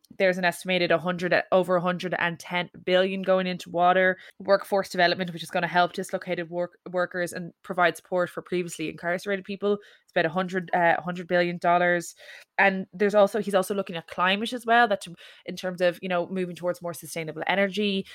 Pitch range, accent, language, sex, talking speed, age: 170-190 Hz, Irish, English, female, 180 wpm, 20-39